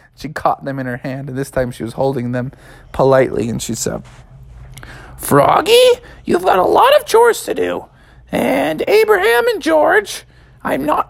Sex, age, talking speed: male, 20-39, 175 wpm